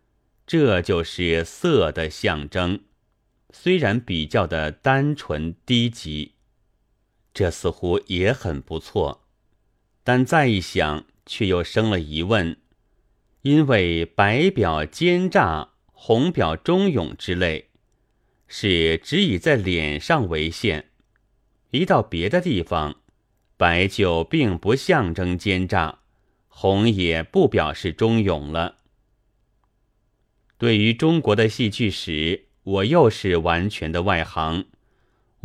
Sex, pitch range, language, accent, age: male, 85-115 Hz, Chinese, native, 30-49